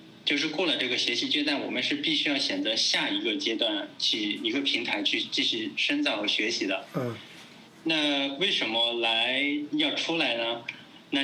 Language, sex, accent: Chinese, male, native